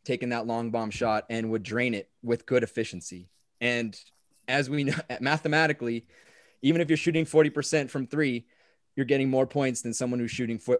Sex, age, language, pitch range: male, 20-39, English, 115-140 Hz